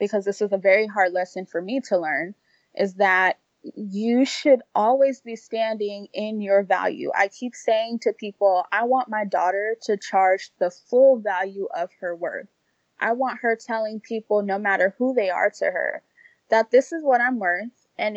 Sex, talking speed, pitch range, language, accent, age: female, 190 wpm, 195-245 Hz, English, American, 20-39